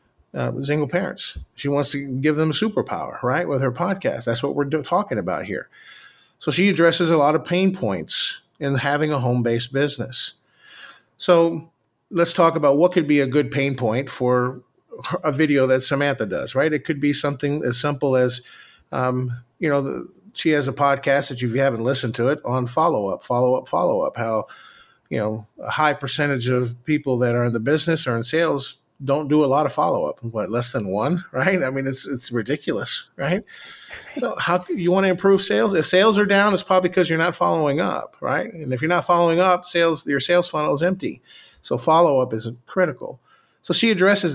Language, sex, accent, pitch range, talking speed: English, male, American, 130-170 Hz, 205 wpm